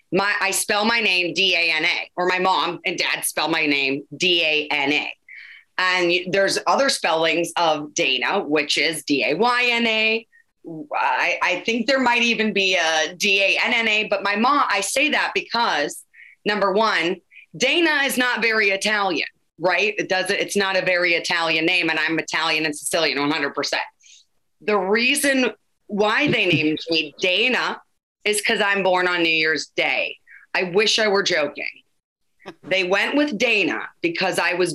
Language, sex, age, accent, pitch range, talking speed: English, female, 30-49, American, 175-230 Hz, 155 wpm